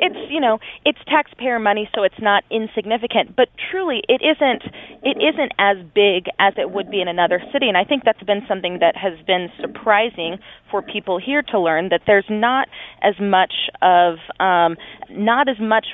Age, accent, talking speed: 20-39, American, 190 wpm